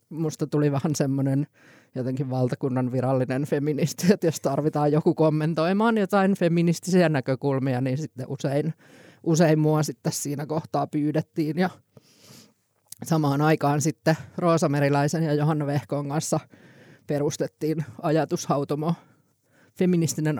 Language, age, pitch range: Finnish, 20-39, 140-160 Hz